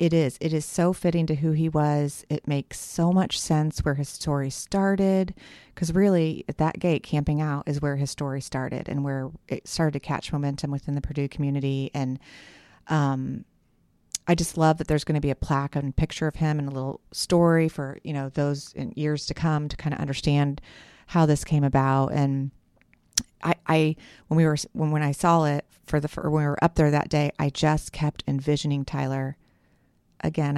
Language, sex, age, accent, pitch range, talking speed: English, female, 30-49, American, 140-160 Hz, 205 wpm